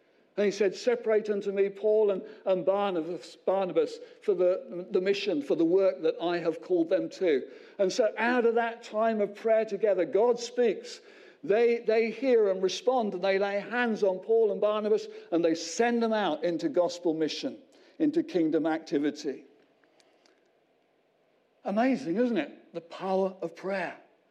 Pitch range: 170-235 Hz